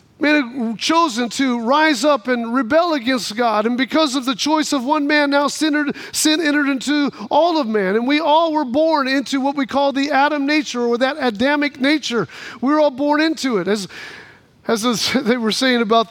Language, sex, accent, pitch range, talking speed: English, male, American, 235-290 Hz, 205 wpm